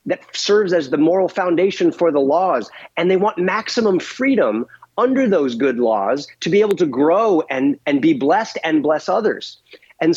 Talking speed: 185 wpm